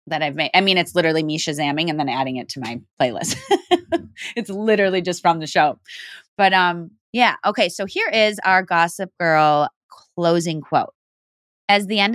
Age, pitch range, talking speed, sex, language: 20-39, 155-210 Hz, 185 wpm, female, English